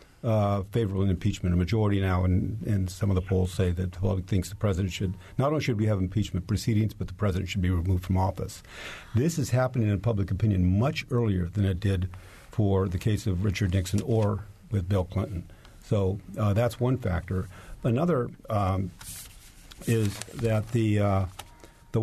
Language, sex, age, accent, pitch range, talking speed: English, male, 50-69, American, 95-115 Hz, 185 wpm